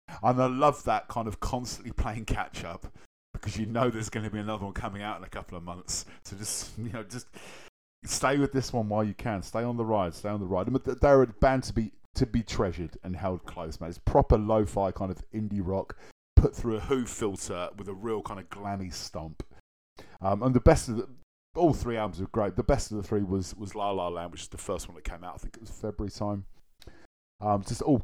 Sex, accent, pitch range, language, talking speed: male, British, 90-110 Hz, English, 245 wpm